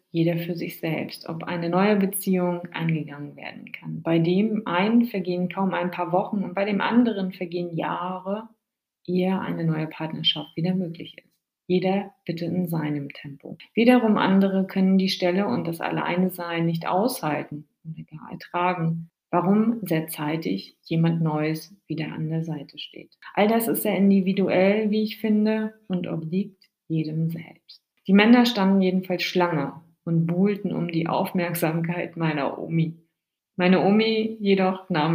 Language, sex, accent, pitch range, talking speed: German, female, German, 165-195 Hz, 150 wpm